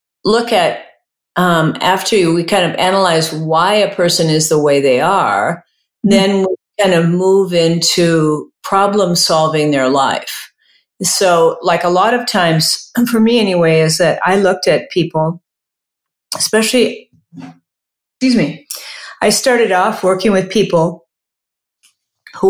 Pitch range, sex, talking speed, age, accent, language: 155-195 Hz, female, 135 wpm, 50-69, American, English